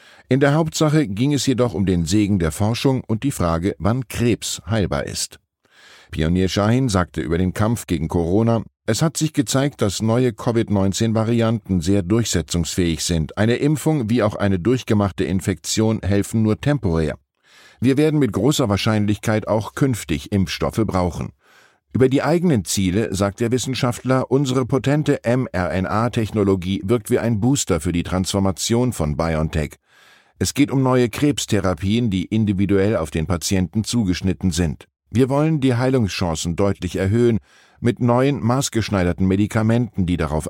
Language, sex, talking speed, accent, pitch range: German, male, 145 wpm, German, 90-125 Hz